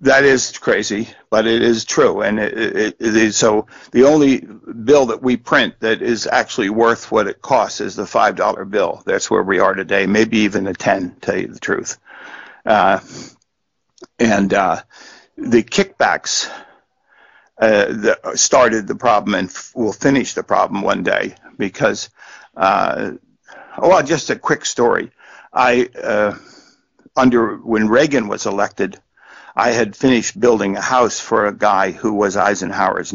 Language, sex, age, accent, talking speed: English, male, 60-79, American, 165 wpm